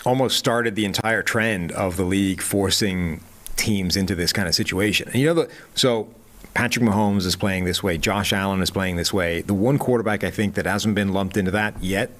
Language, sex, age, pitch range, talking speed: English, male, 30-49, 95-115 Hz, 215 wpm